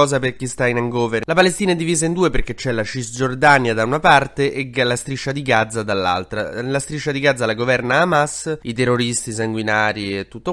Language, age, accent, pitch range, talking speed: Italian, 20-39, native, 115-140 Hz, 205 wpm